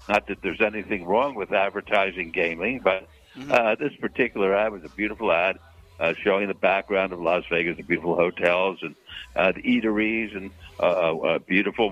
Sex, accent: male, American